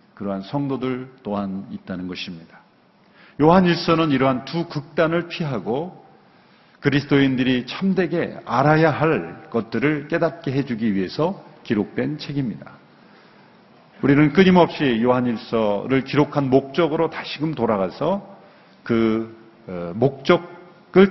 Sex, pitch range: male, 115-170 Hz